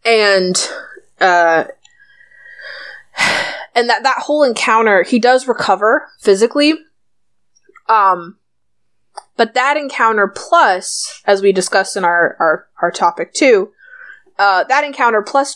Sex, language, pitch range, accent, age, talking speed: female, English, 180-255 Hz, American, 20-39, 110 wpm